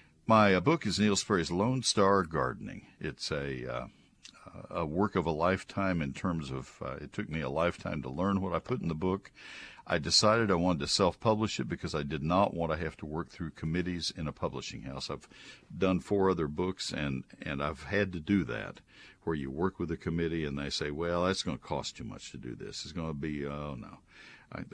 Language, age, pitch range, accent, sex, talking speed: English, 60-79, 80-100 Hz, American, male, 230 wpm